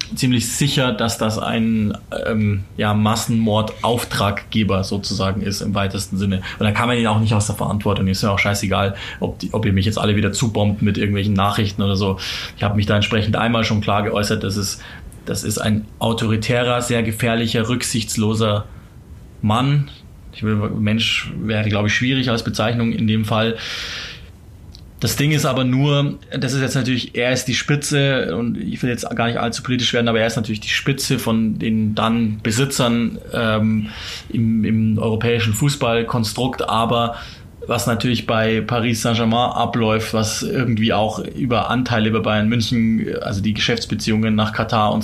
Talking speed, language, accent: 175 wpm, German, German